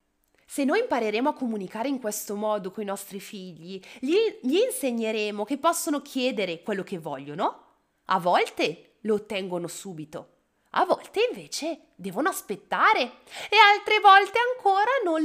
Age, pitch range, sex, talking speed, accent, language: 20-39, 190-275 Hz, female, 140 wpm, native, Italian